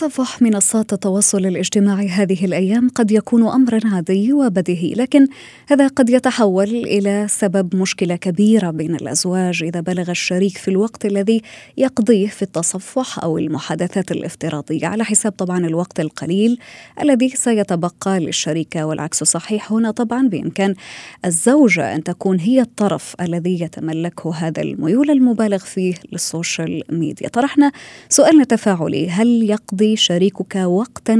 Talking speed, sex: 125 wpm, female